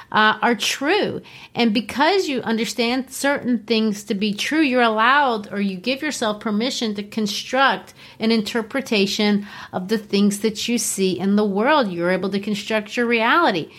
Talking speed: 165 wpm